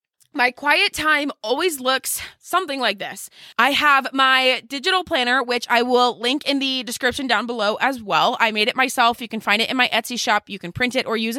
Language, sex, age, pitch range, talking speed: English, female, 20-39, 225-280 Hz, 220 wpm